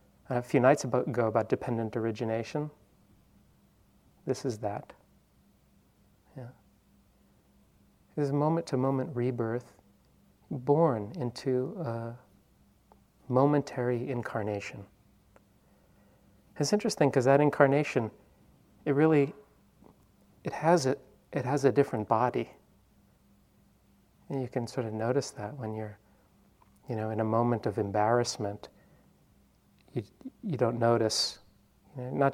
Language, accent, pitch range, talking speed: English, American, 110-140 Hz, 110 wpm